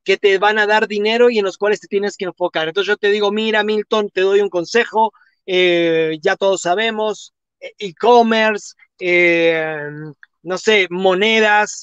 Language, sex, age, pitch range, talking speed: Spanish, male, 30-49, 190-240 Hz, 160 wpm